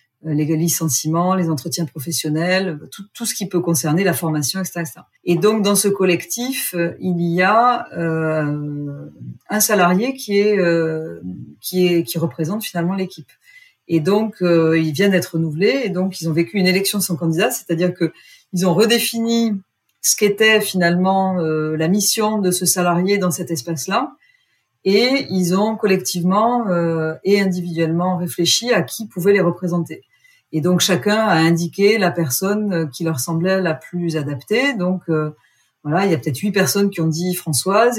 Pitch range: 165-200 Hz